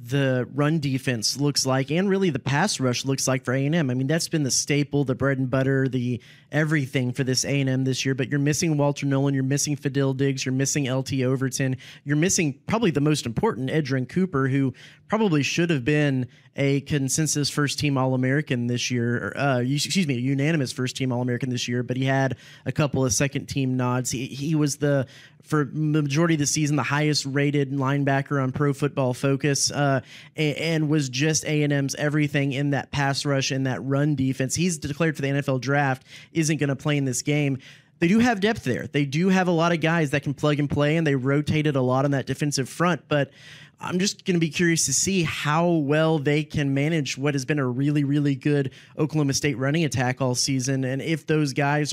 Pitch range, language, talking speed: 135-150 Hz, English, 215 wpm